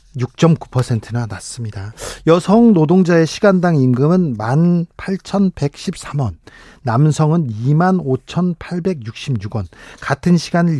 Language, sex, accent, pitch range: Korean, male, native, 125-175 Hz